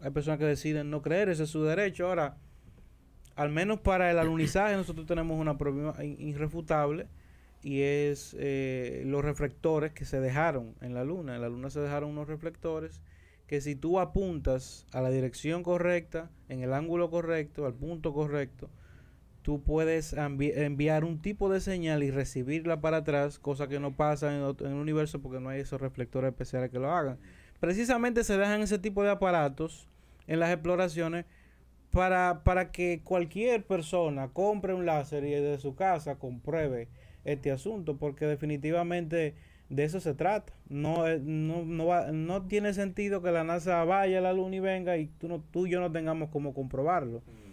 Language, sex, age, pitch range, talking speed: Spanish, male, 30-49, 140-175 Hz, 175 wpm